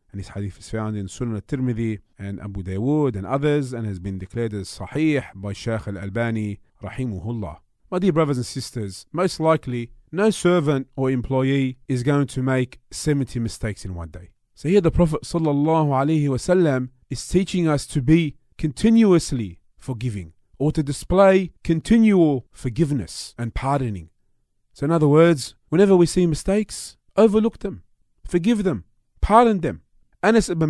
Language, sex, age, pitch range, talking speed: English, male, 30-49, 115-175 Hz, 150 wpm